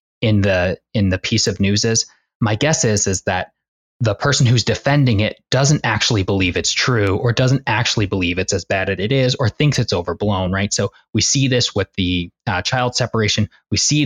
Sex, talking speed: male, 210 wpm